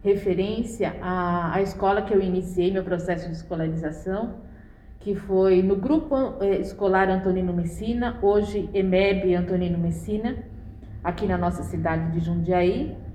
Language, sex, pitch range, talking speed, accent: Portuguese, female, 180-210 Hz, 130 wpm, Brazilian